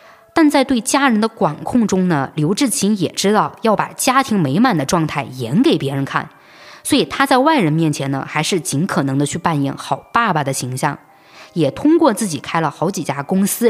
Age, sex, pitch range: 20-39, female, 145-225 Hz